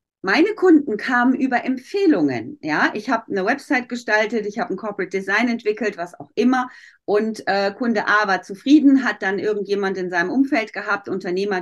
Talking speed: 175 wpm